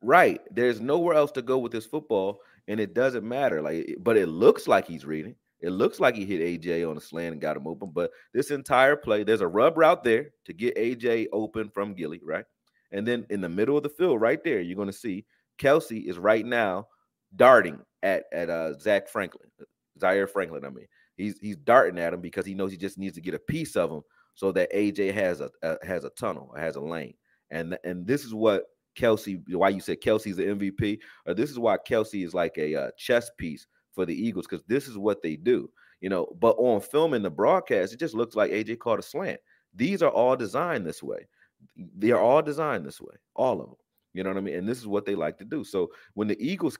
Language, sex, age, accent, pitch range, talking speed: English, male, 30-49, American, 95-120 Hz, 240 wpm